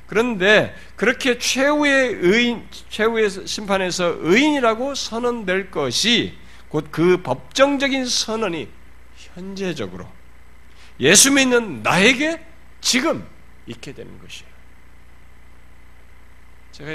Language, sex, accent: Korean, male, native